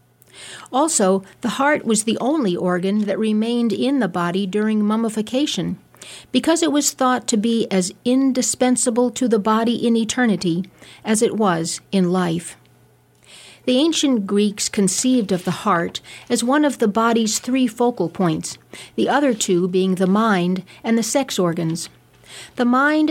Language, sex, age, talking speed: English, female, 50-69, 155 wpm